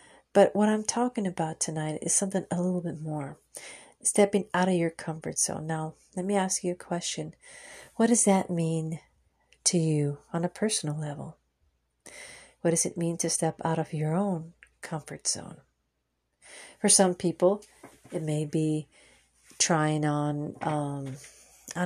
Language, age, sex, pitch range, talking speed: English, 40-59, female, 150-180 Hz, 155 wpm